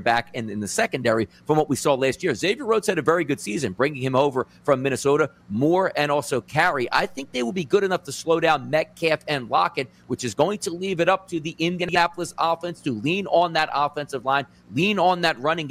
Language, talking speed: English, 235 wpm